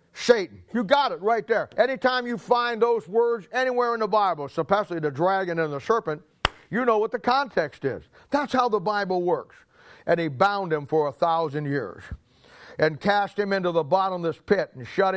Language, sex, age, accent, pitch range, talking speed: English, male, 50-69, American, 160-205 Hz, 195 wpm